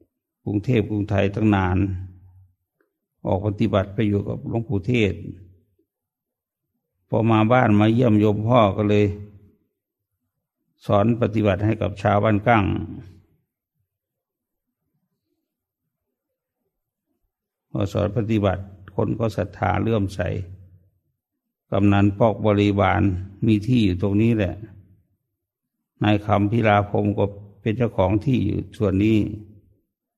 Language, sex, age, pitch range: English, male, 60-79, 100-110 Hz